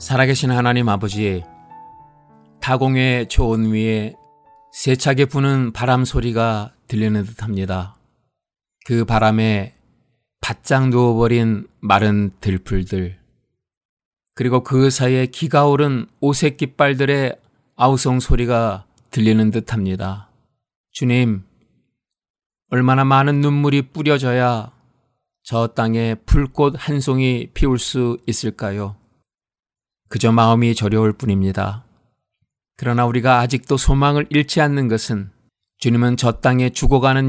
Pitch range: 110-140 Hz